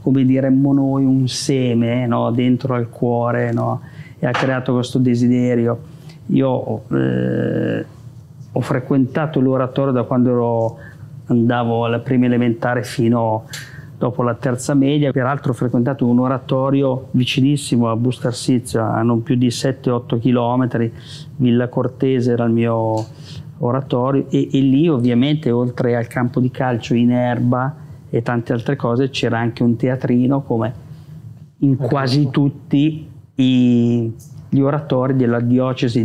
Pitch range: 120-140 Hz